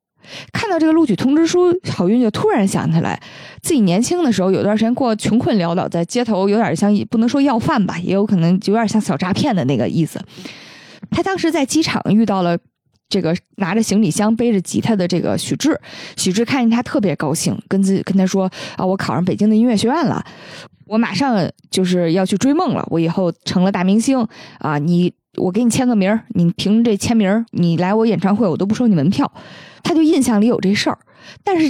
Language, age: Chinese, 20-39